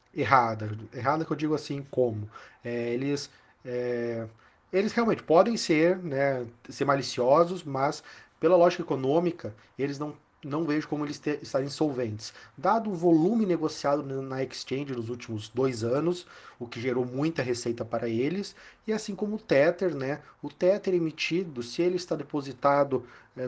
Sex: male